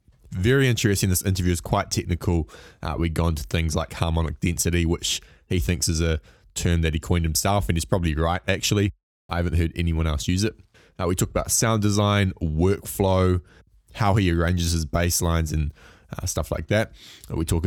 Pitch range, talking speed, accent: 80-105 Hz, 195 wpm, Australian